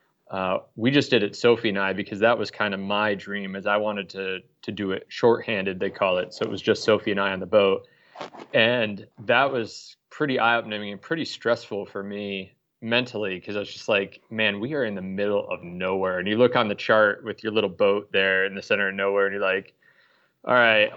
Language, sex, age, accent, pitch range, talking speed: English, male, 20-39, American, 100-125 Hz, 230 wpm